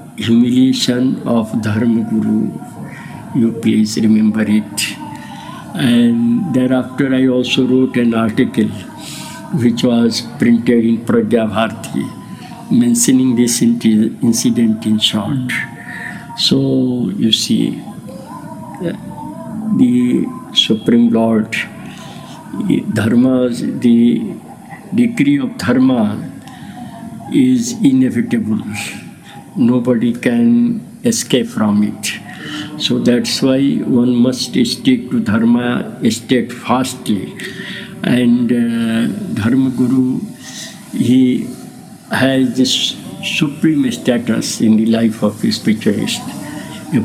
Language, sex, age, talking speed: English, male, 60-79, 85 wpm